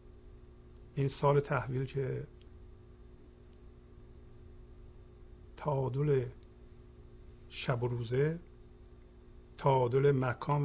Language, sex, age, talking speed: Persian, male, 50-69, 55 wpm